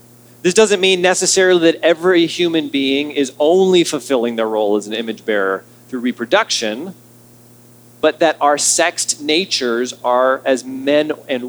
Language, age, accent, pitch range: English, 40-59, American, 120-185 Hz